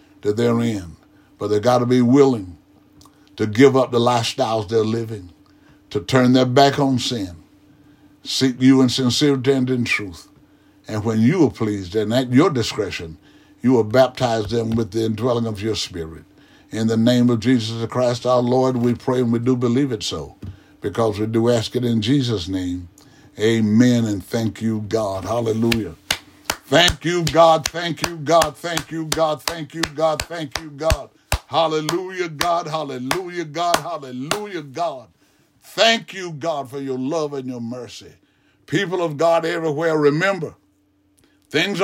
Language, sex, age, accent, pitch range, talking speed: English, male, 60-79, American, 115-160 Hz, 165 wpm